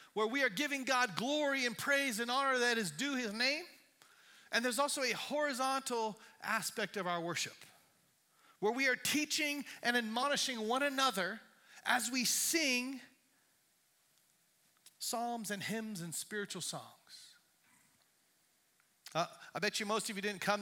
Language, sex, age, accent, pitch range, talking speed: English, male, 40-59, American, 210-285 Hz, 145 wpm